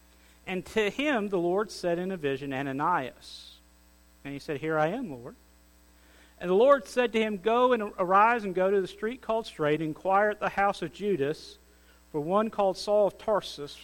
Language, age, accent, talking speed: English, 50-69, American, 200 wpm